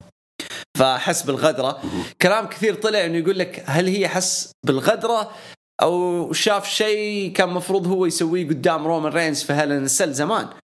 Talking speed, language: 145 wpm, English